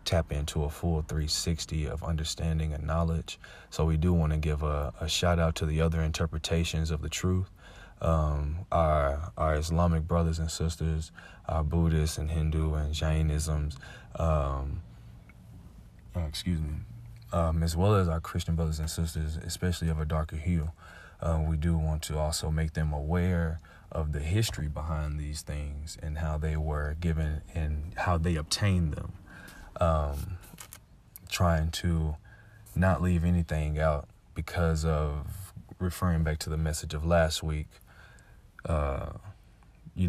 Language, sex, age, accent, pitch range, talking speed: English, male, 30-49, American, 80-90 Hz, 150 wpm